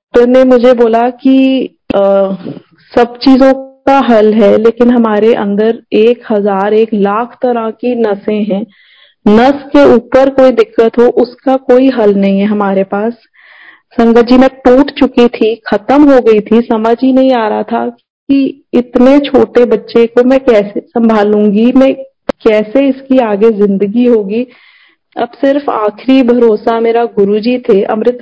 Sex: female